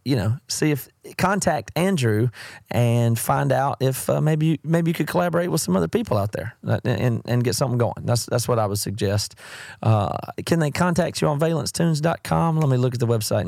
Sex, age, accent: male, 30-49, American